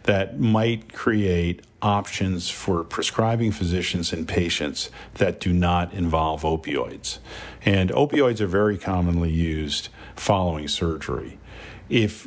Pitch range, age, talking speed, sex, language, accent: 85-110 Hz, 50-69, 110 wpm, male, English, American